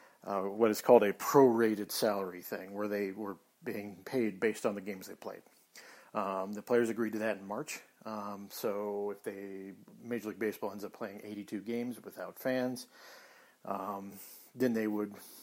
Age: 40-59